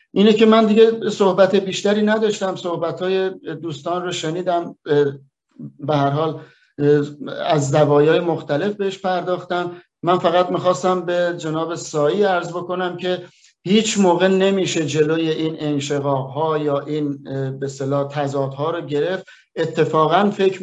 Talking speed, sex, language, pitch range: 120 wpm, male, Persian, 150-185 Hz